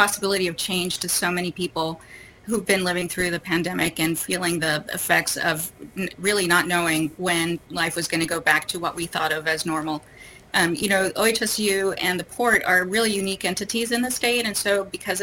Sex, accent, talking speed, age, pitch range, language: female, American, 205 wpm, 30-49, 170-195 Hz, English